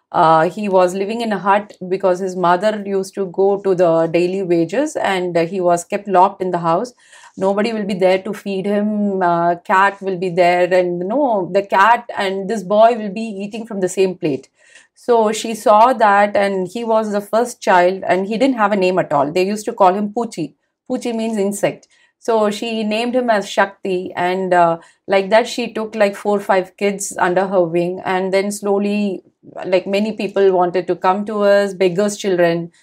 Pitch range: 180-210 Hz